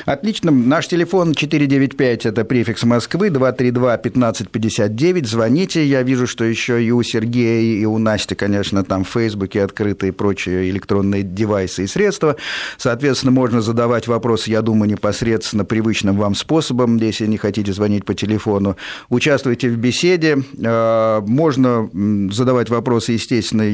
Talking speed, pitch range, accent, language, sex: 135 wpm, 105-130 Hz, native, Russian, male